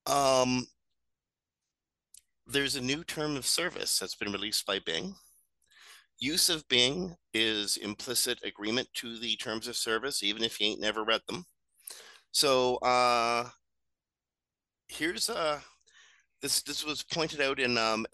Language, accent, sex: English, American, male